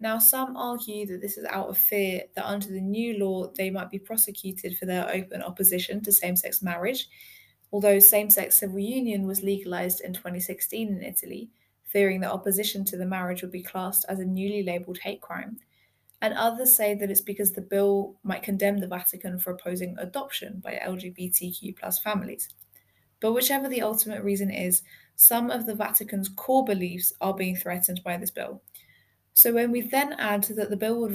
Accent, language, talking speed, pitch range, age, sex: British, English, 185 wpm, 185-215 Hz, 10-29, female